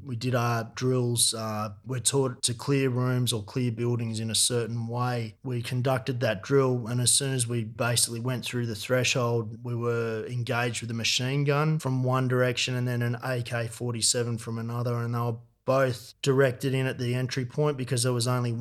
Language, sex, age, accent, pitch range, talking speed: English, male, 30-49, Australian, 120-130 Hz, 195 wpm